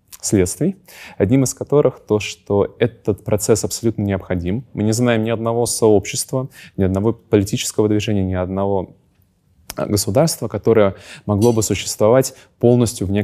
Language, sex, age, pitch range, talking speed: Ukrainian, male, 20-39, 100-120 Hz, 130 wpm